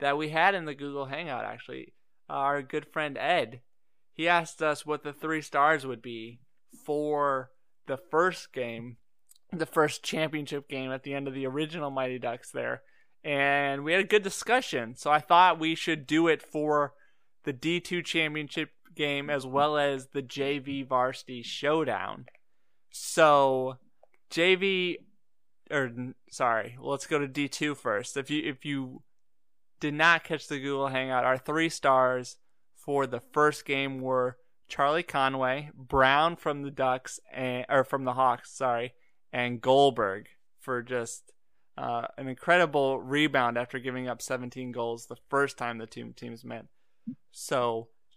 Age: 20-39